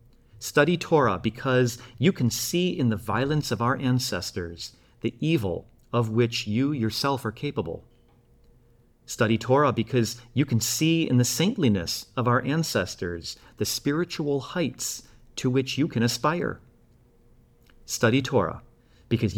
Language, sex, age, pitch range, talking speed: English, male, 40-59, 110-130 Hz, 135 wpm